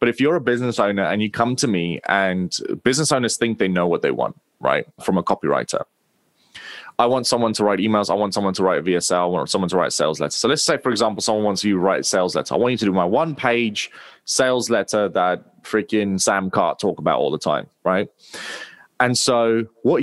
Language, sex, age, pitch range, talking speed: English, male, 20-39, 100-120 Hz, 240 wpm